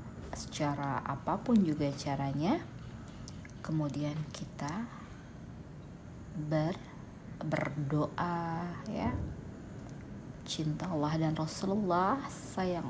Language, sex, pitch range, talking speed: Indonesian, female, 155-205 Hz, 65 wpm